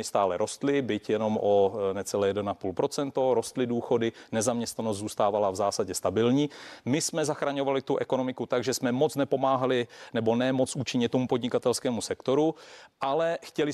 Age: 40-59